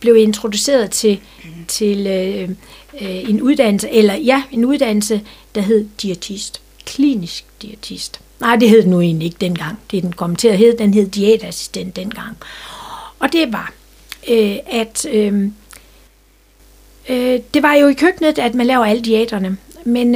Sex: female